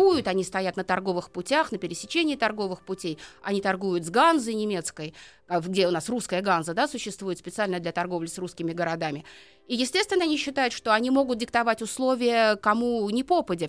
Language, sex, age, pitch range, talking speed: Russian, female, 30-49, 190-270 Hz, 165 wpm